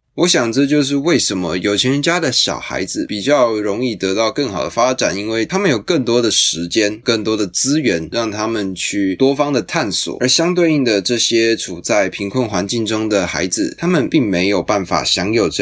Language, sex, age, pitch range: Chinese, male, 20-39, 100-140 Hz